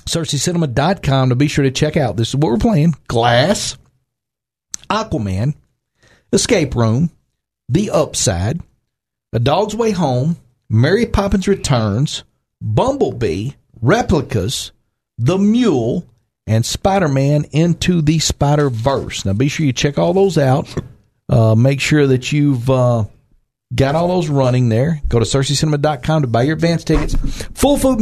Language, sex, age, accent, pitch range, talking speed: English, male, 50-69, American, 120-155 Hz, 135 wpm